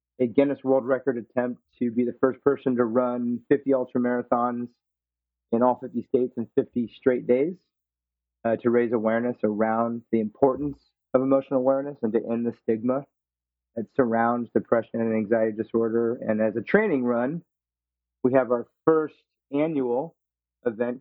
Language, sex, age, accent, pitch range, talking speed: English, male, 30-49, American, 105-125 Hz, 155 wpm